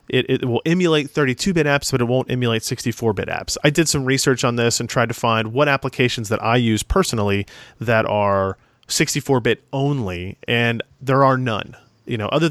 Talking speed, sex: 200 wpm, male